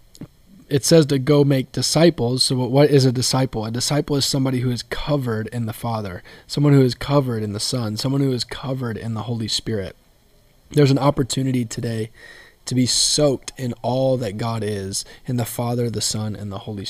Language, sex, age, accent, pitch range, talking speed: English, male, 20-39, American, 115-140 Hz, 200 wpm